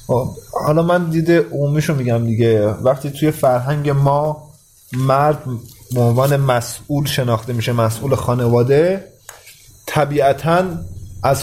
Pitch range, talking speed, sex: 125-155 Hz, 105 wpm, male